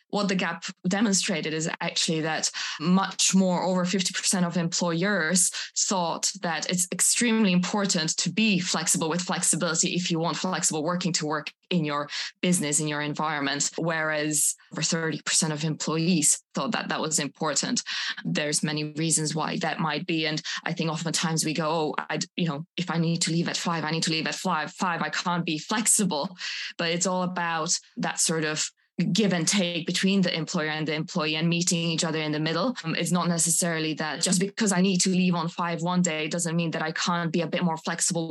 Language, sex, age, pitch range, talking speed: English, female, 20-39, 155-180 Hz, 205 wpm